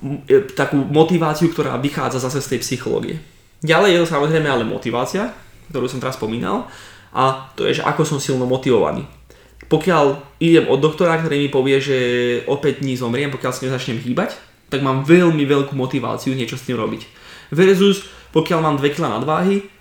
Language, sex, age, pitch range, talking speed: Slovak, male, 20-39, 125-160 Hz, 165 wpm